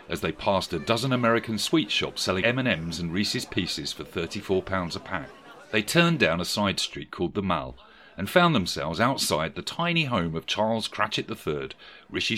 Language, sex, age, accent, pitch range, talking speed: English, male, 40-59, British, 90-140 Hz, 185 wpm